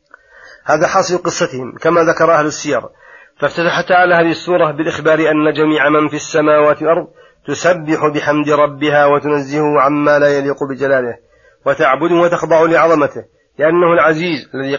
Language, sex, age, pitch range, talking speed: Arabic, male, 40-59, 145-170 Hz, 130 wpm